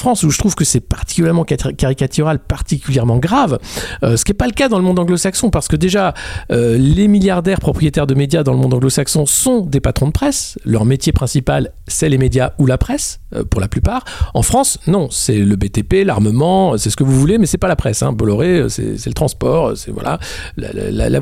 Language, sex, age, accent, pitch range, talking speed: French, male, 50-69, French, 125-190 Hz, 225 wpm